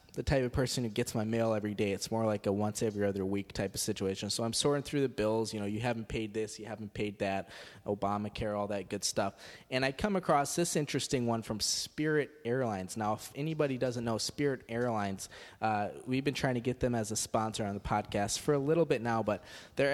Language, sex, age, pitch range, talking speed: English, male, 20-39, 115-150 Hz, 230 wpm